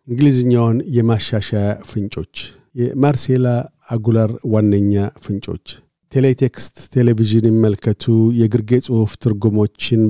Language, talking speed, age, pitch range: Amharic, 85 wpm, 50-69, 105-120 Hz